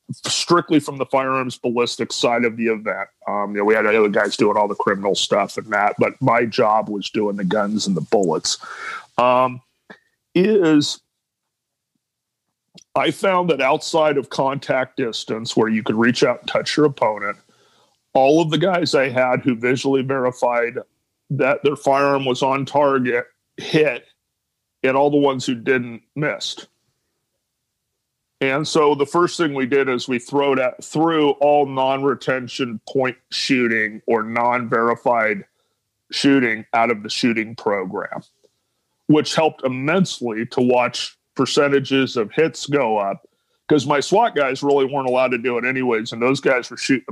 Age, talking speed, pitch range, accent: 40-59, 160 wpm, 120-145 Hz, American